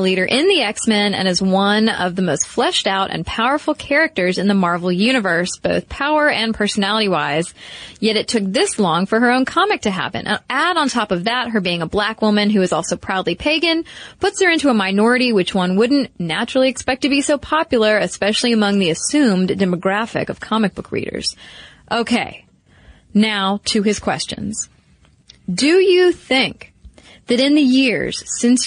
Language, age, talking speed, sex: English, 30-49, 180 wpm, female